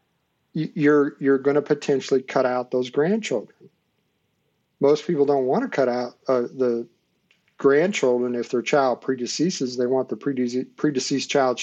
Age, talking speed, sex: 50-69, 145 wpm, male